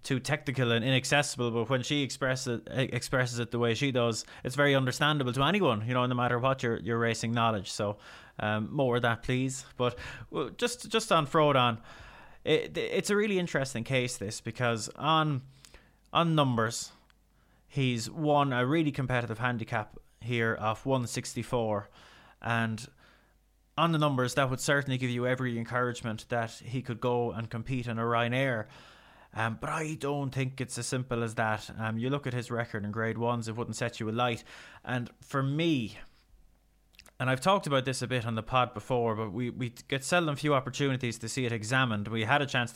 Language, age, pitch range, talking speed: English, 20-39, 115-135 Hz, 185 wpm